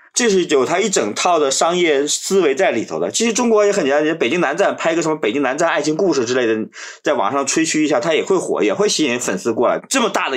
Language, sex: Chinese, male